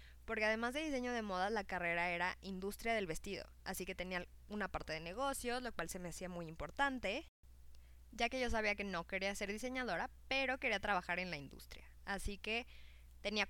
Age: 20-39